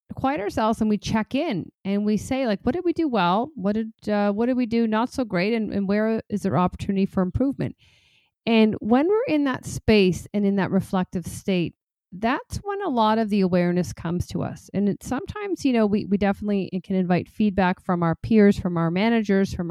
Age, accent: 40-59, American